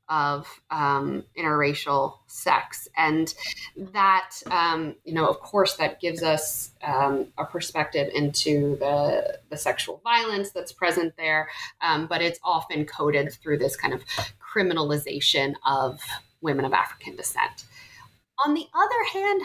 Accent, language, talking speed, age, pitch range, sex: American, English, 135 wpm, 30-49, 160-235 Hz, female